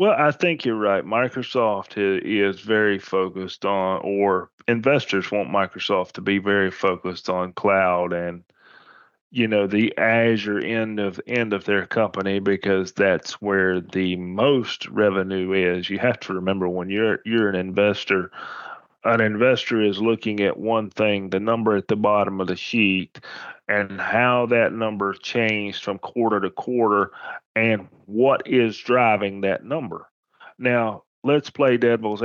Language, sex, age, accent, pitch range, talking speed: English, male, 30-49, American, 100-115 Hz, 150 wpm